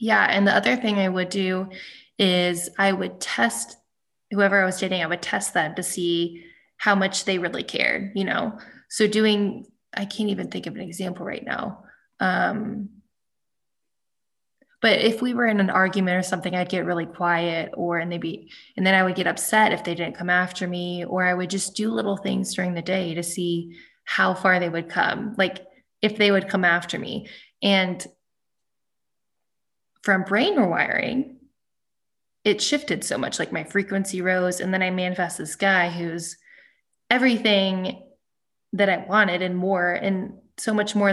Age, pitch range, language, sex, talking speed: 20-39, 180-215 Hz, English, female, 180 wpm